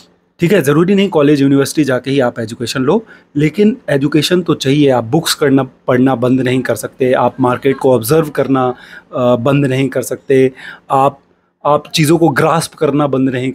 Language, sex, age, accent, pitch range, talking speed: English, male, 30-49, Indian, 130-160 Hz, 175 wpm